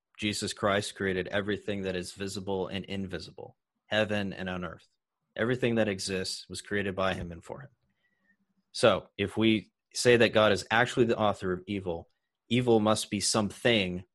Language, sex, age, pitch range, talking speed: English, male, 30-49, 95-110 Hz, 165 wpm